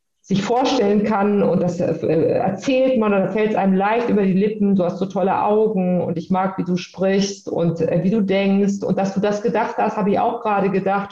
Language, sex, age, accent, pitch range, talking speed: German, female, 50-69, German, 180-220 Hz, 220 wpm